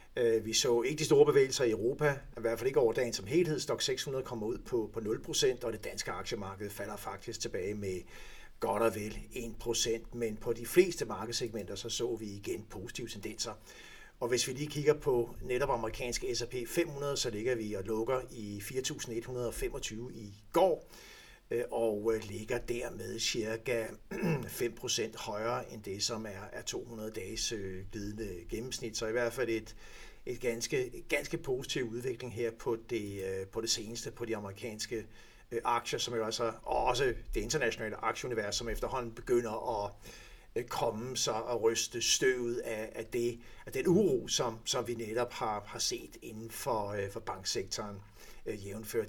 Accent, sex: native, male